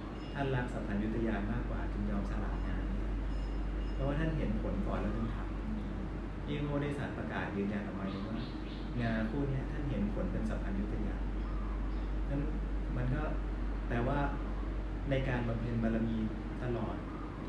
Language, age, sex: Thai, 30-49, male